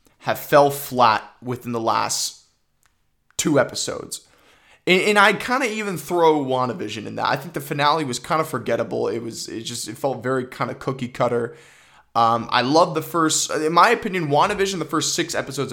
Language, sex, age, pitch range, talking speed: English, male, 20-39, 120-155 Hz, 190 wpm